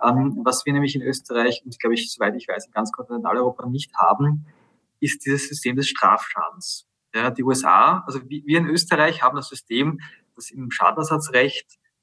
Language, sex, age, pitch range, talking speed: German, male, 20-39, 125-150 Hz, 170 wpm